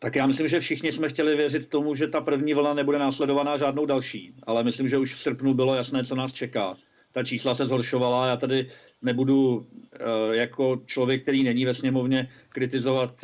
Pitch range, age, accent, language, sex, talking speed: 125-135 Hz, 50-69, native, Czech, male, 190 wpm